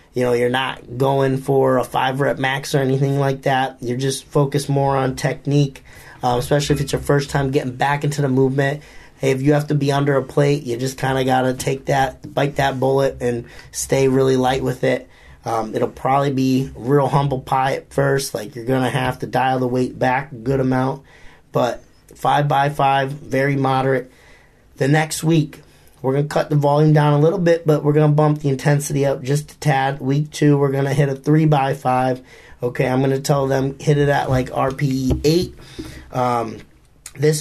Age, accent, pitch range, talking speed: 30-49, American, 130-150 Hz, 215 wpm